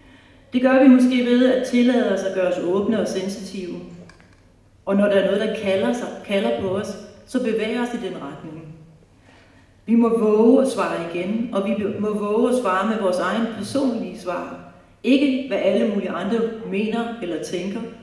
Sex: female